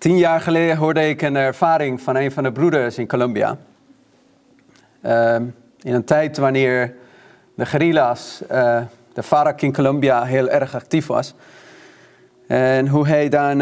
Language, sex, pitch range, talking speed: Dutch, male, 130-160 Hz, 150 wpm